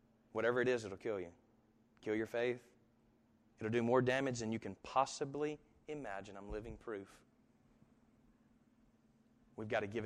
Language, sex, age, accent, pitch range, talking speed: English, male, 30-49, American, 110-120 Hz, 150 wpm